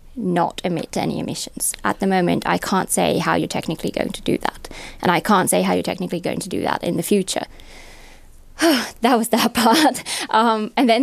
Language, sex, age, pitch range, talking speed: Finnish, female, 20-39, 185-230 Hz, 205 wpm